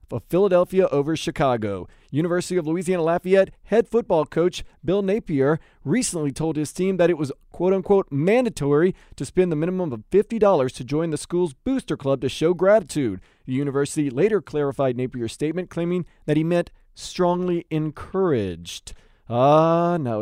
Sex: male